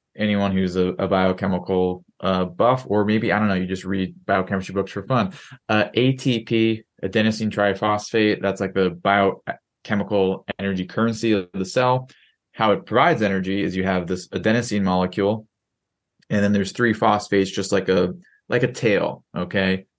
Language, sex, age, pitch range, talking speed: English, male, 20-39, 95-110 Hz, 160 wpm